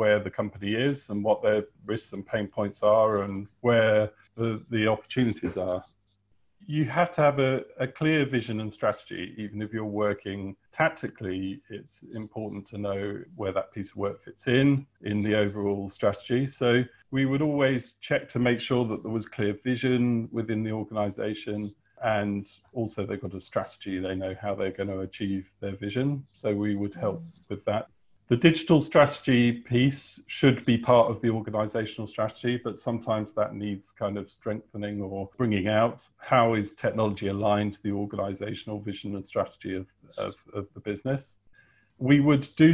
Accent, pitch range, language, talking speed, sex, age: British, 100-125 Hz, English, 175 wpm, male, 40-59